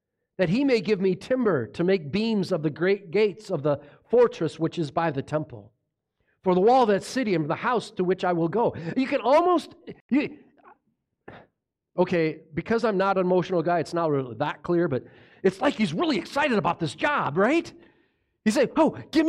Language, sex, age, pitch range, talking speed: English, male, 40-59, 165-245 Hz, 200 wpm